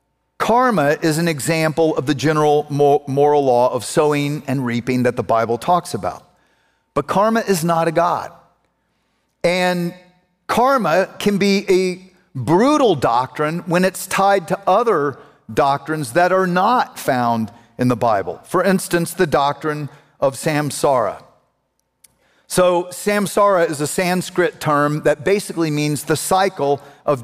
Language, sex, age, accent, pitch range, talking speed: English, male, 50-69, American, 145-185 Hz, 135 wpm